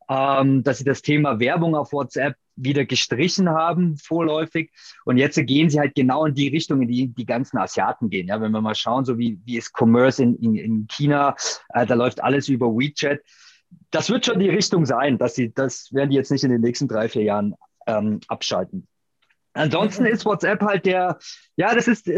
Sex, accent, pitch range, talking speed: male, German, 135-175 Hz, 200 wpm